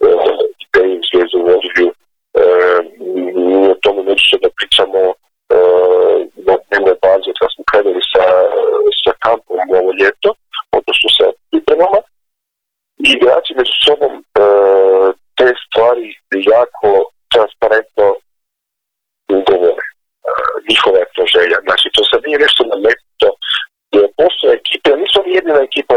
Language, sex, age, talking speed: Croatian, male, 40-59, 110 wpm